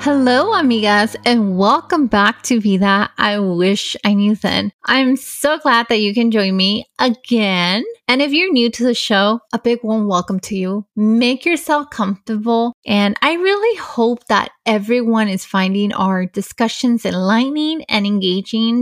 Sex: female